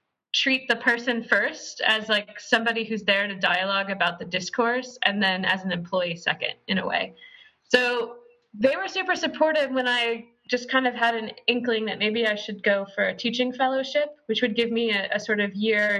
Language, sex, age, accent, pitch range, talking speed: English, female, 20-39, American, 195-250 Hz, 205 wpm